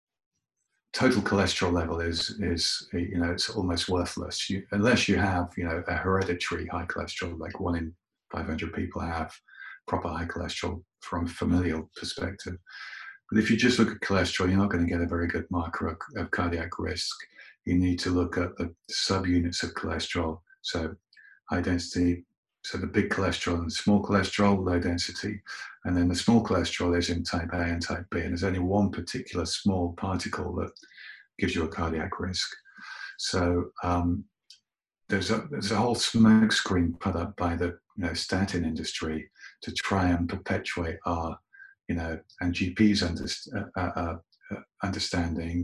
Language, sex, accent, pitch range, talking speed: English, male, British, 85-95 Hz, 170 wpm